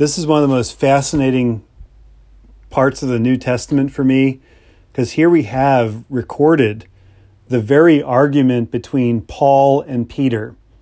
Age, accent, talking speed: 40-59, American, 145 wpm